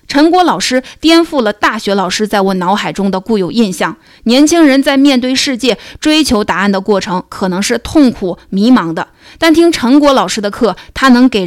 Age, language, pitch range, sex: 20-39, Chinese, 195-265 Hz, female